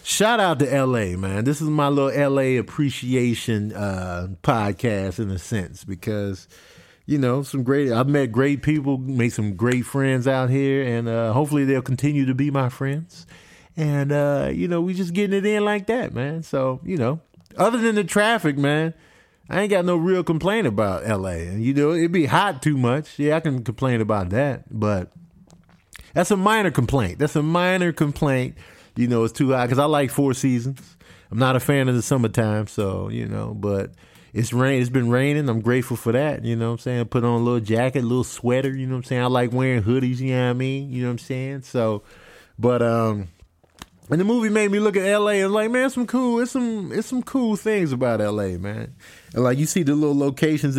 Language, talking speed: English, 215 wpm